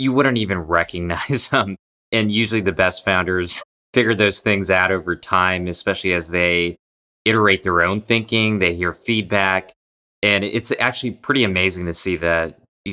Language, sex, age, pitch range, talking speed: English, male, 20-39, 85-95 Hz, 160 wpm